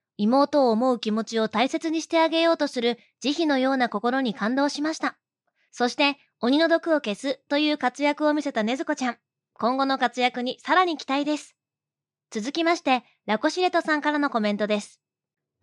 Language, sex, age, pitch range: Japanese, female, 20-39, 235-295 Hz